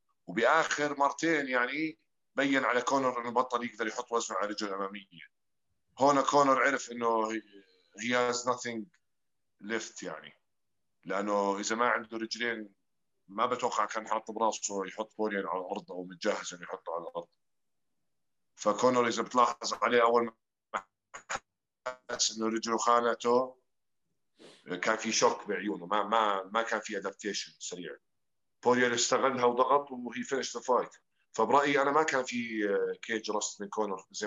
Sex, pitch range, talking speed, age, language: male, 105-125 Hz, 140 wpm, 50-69, Arabic